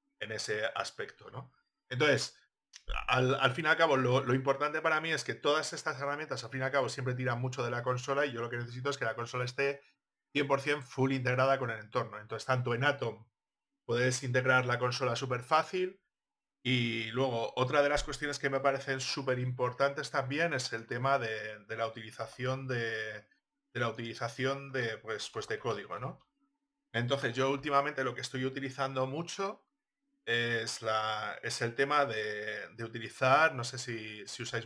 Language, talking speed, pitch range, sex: Spanish, 185 wpm, 120-140 Hz, male